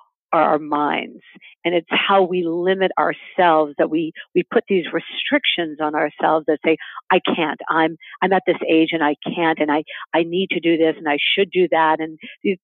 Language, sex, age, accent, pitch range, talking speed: English, female, 50-69, American, 155-205 Hz, 205 wpm